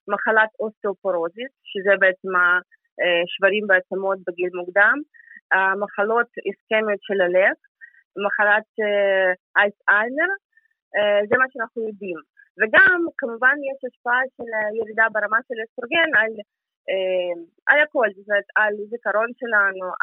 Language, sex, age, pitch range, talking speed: Hebrew, female, 20-39, 205-290 Hz, 105 wpm